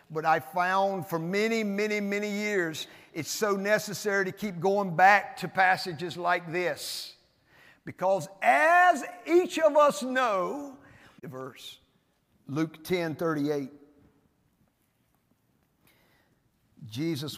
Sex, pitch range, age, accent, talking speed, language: male, 170-275 Hz, 50-69, American, 105 wpm, English